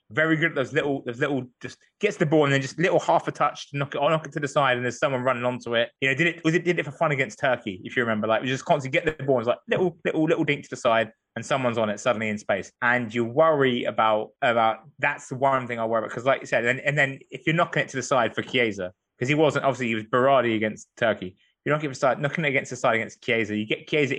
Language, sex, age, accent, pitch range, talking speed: English, male, 20-39, British, 120-155 Hz, 290 wpm